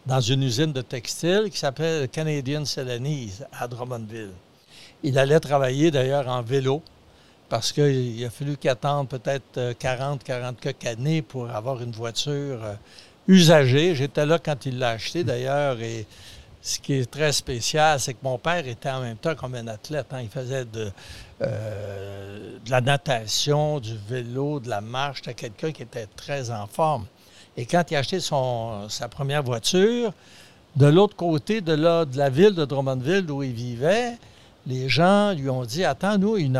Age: 60-79